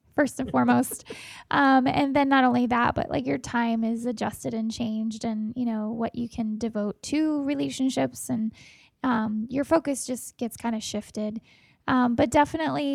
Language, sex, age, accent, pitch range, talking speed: English, female, 10-29, American, 235-275 Hz, 175 wpm